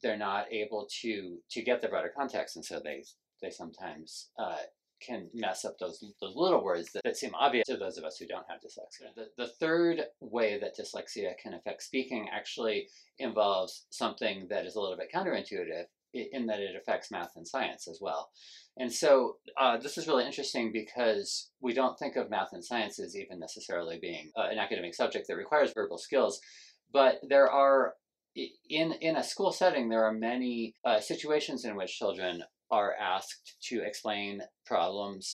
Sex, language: male, English